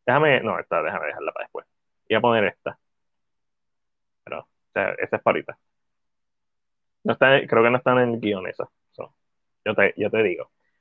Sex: male